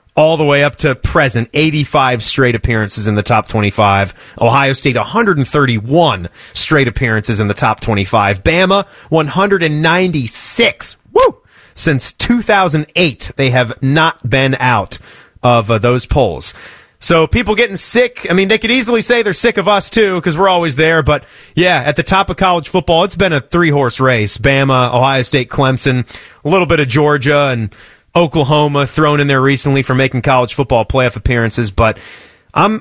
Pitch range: 130-195 Hz